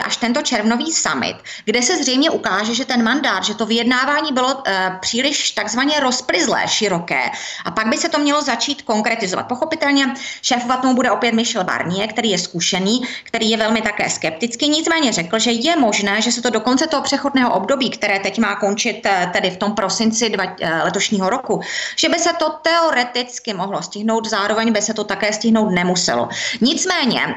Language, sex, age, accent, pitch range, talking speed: Czech, female, 30-49, native, 200-255 Hz, 180 wpm